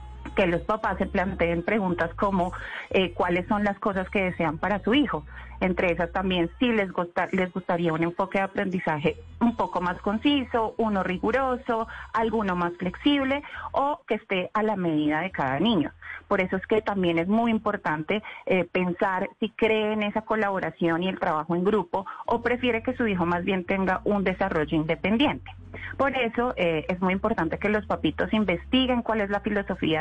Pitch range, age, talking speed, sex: 175-215 Hz, 30-49, 185 wpm, female